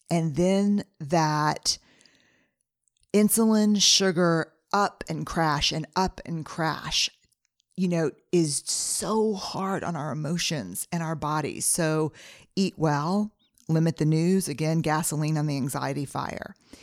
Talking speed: 125 wpm